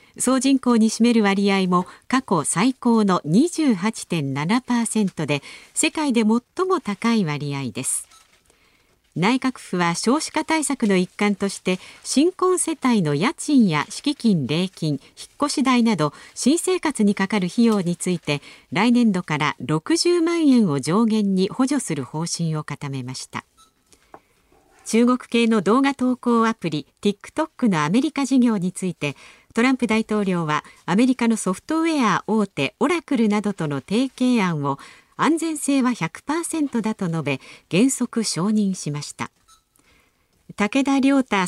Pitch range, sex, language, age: 170-260 Hz, female, Japanese, 50-69